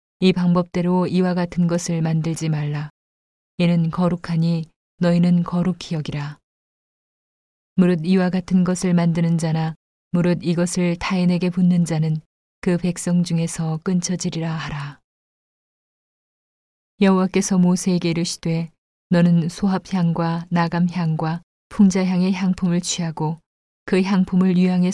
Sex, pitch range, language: female, 165-180 Hz, Korean